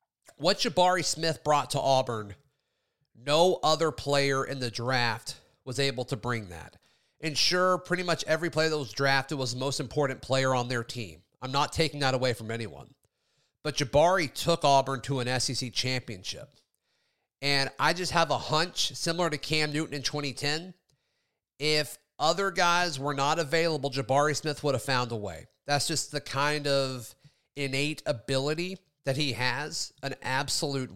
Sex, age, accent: male, 30-49, American